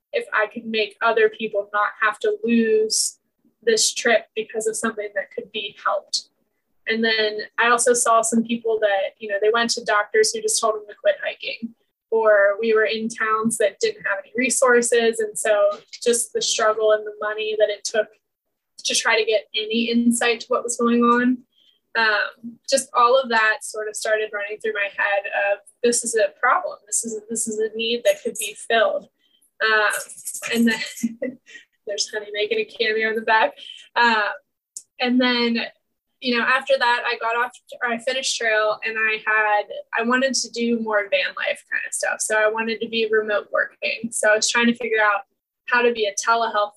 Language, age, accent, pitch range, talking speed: English, 20-39, American, 215-250 Hz, 200 wpm